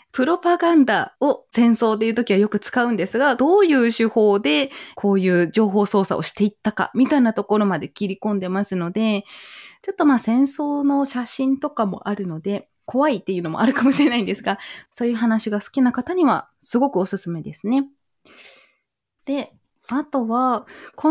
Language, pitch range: Japanese, 210-295 Hz